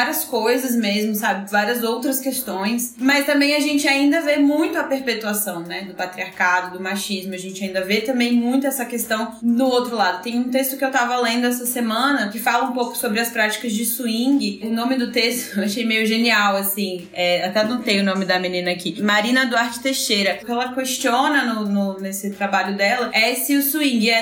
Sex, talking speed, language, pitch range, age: female, 210 wpm, Portuguese, 220-275 Hz, 20-39